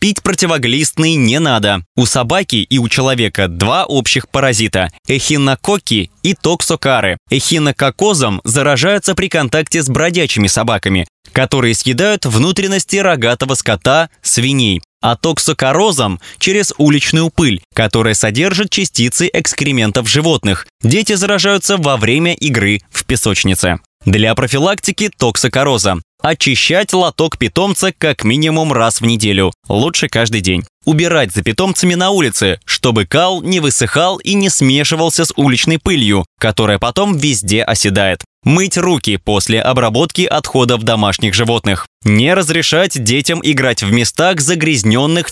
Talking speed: 120 wpm